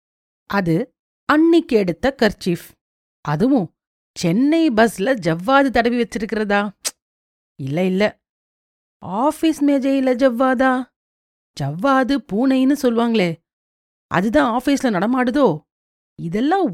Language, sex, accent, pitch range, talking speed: Tamil, female, native, 170-270 Hz, 80 wpm